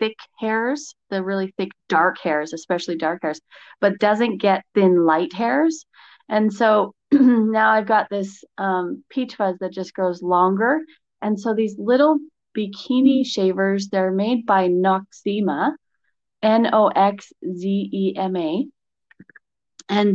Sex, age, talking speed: female, 30-49, 120 wpm